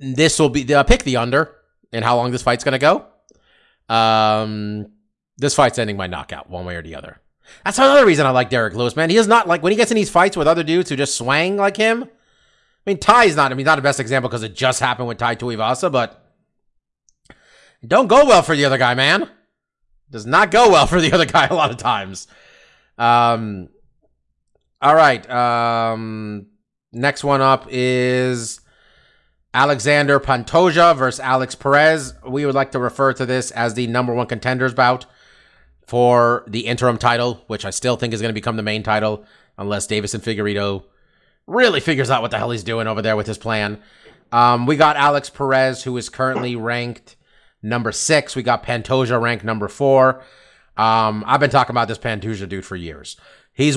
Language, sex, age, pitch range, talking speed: English, male, 30-49, 110-140 Hz, 200 wpm